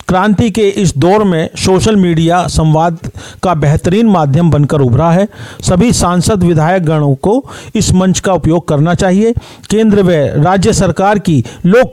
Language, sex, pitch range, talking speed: Hindi, male, 155-200 Hz, 155 wpm